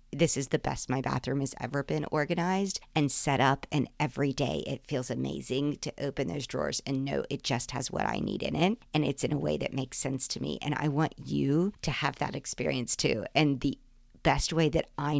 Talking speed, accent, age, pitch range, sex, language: 230 wpm, American, 50-69, 140-170 Hz, female, English